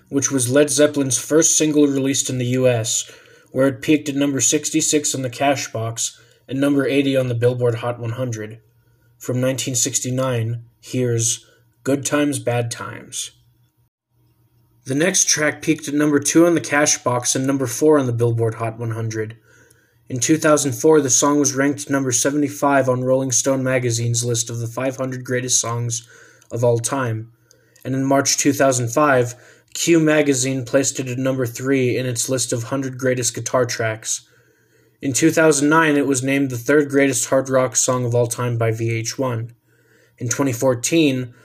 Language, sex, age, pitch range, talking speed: English, male, 20-39, 120-140 Hz, 160 wpm